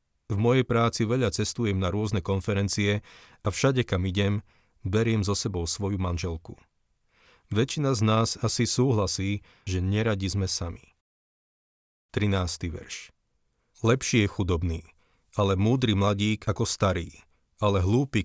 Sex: male